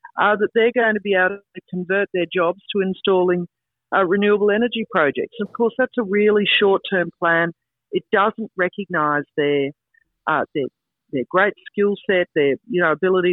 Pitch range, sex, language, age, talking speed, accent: 155-210 Hz, female, English, 50-69, 170 wpm, Australian